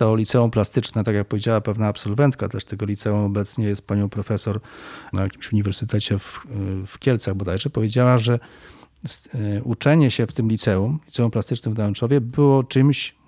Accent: native